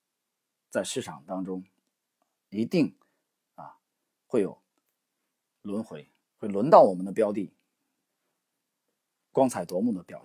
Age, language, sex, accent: 40-59, Chinese, male, native